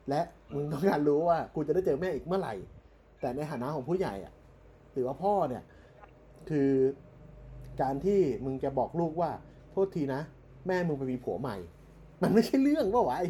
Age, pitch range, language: 30-49, 130-170 Hz, Thai